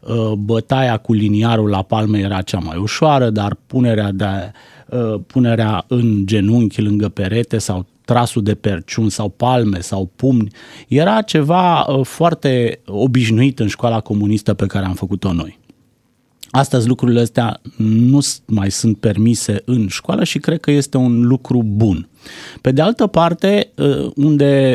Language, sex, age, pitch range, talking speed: Romanian, male, 30-49, 110-155 Hz, 140 wpm